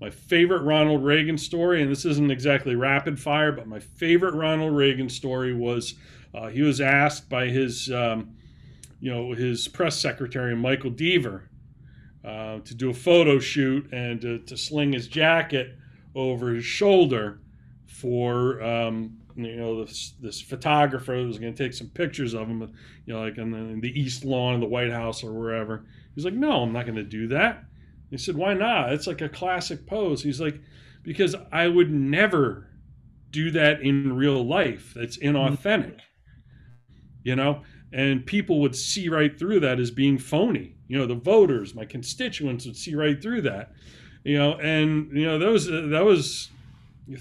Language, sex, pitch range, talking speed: English, male, 120-150 Hz, 180 wpm